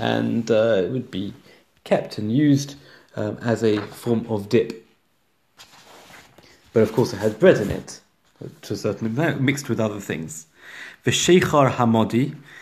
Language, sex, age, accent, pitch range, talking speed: English, male, 40-59, British, 110-140 Hz, 155 wpm